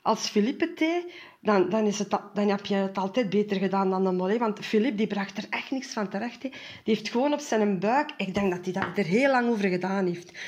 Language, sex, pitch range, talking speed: Dutch, female, 195-245 Hz, 240 wpm